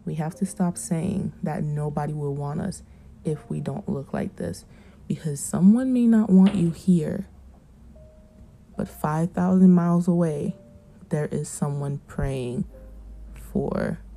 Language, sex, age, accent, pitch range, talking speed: English, female, 20-39, American, 145-185 Hz, 135 wpm